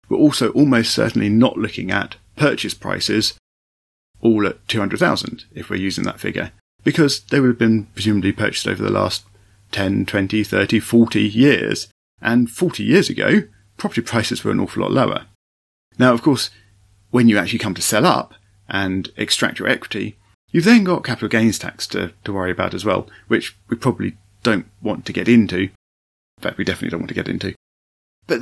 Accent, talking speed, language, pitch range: British, 185 wpm, English, 100-125 Hz